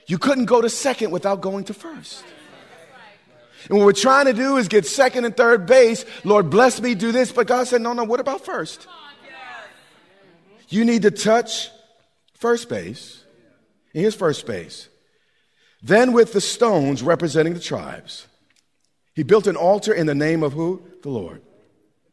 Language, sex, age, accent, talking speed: English, male, 40-59, American, 170 wpm